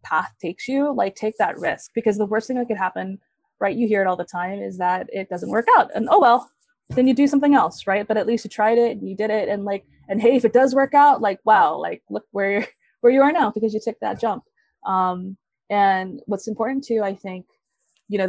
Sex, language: female, English